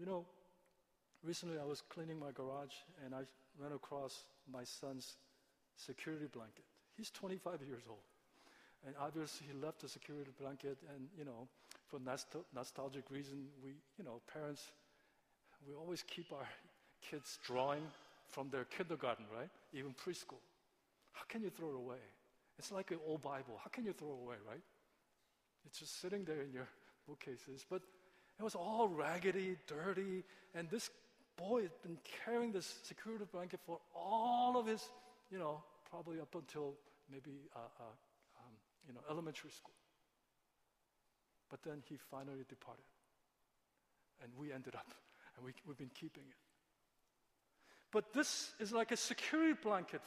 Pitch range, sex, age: 135-200 Hz, male, 50-69